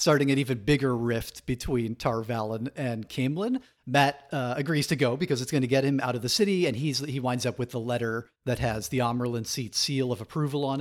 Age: 40-59